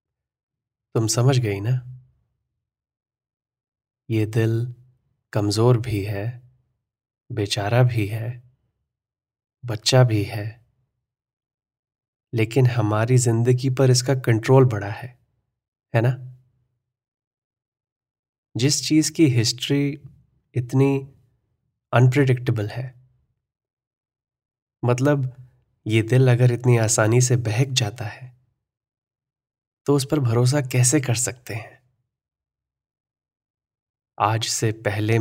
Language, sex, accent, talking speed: Hindi, male, native, 90 wpm